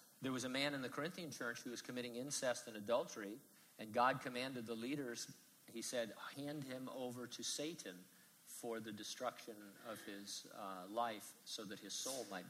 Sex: male